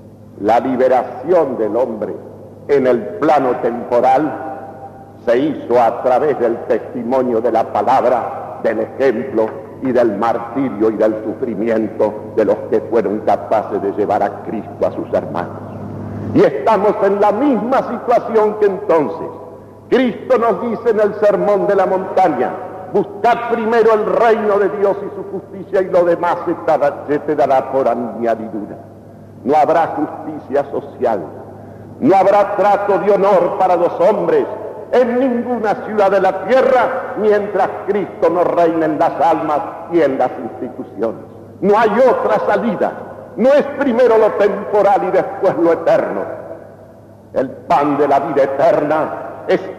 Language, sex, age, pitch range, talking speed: Spanish, male, 50-69, 130-205 Hz, 145 wpm